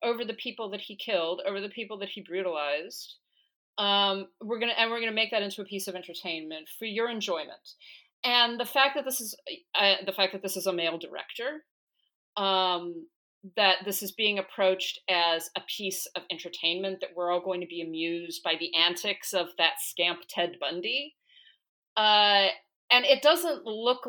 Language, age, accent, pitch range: English, 40-59, American, 180-235 Hz